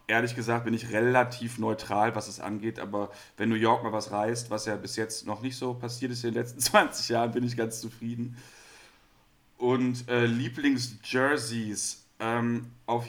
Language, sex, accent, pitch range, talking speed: German, male, German, 115-130 Hz, 185 wpm